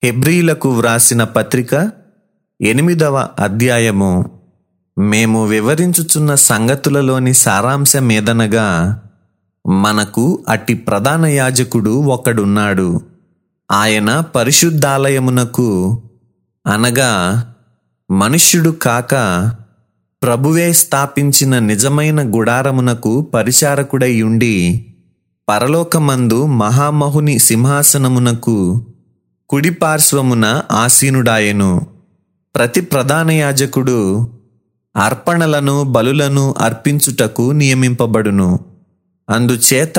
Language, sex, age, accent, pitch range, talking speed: Telugu, male, 30-49, native, 110-145 Hz, 60 wpm